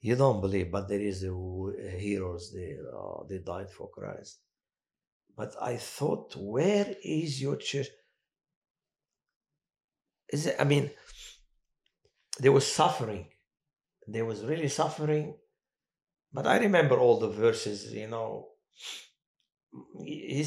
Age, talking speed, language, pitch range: 60-79, 125 wpm, English, 105-140 Hz